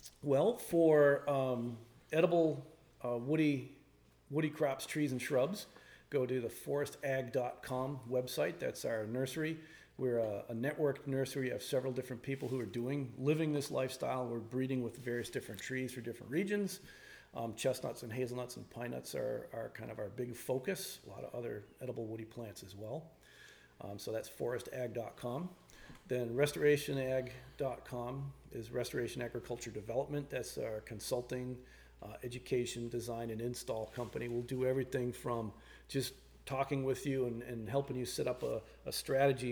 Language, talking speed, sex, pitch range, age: English, 155 wpm, male, 120-135 Hz, 40-59